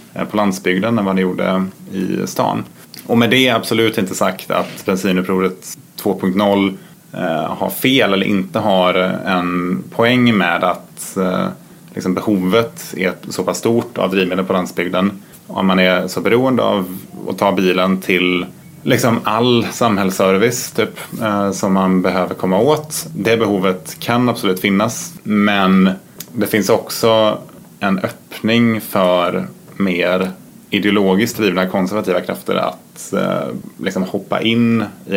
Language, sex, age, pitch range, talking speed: Swedish, male, 20-39, 95-110 Hz, 135 wpm